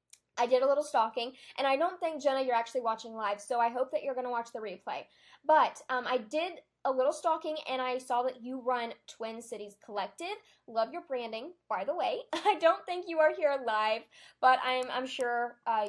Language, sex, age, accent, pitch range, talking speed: English, female, 10-29, American, 230-290 Hz, 220 wpm